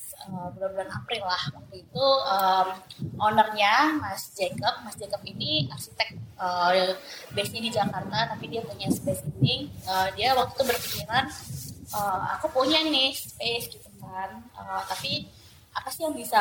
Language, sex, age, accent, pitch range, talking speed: Indonesian, female, 20-39, native, 180-215 Hz, 150 wpm